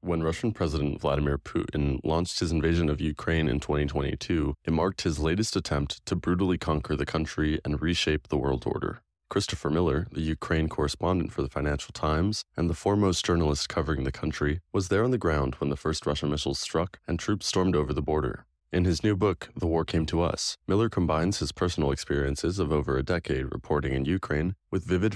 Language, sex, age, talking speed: English, male, 20-39, 200 wpm